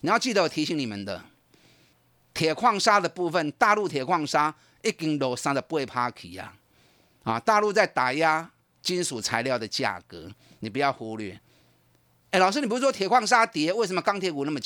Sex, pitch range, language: male, 135-205 Hz, Chinese